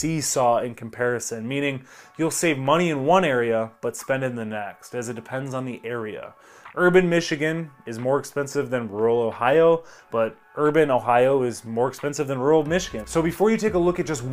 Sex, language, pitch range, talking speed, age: male, English, 120-160 Hz, 195 wpm, 20-39